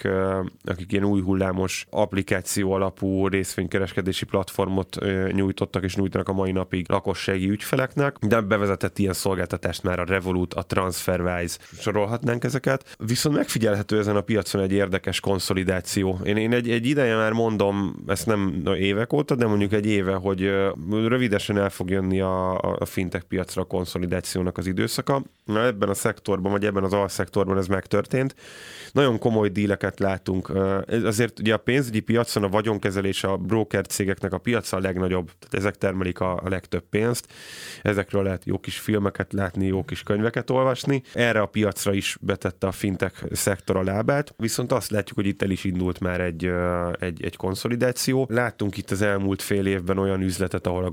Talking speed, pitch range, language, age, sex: 165 wpm, 95-105 Hz, Hungarian, 20-39, male